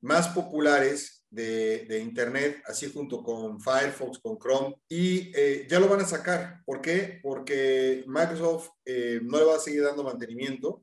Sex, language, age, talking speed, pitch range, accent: male, Spanish, 40-59, 165 wpm, 130-170 Hz, Mexican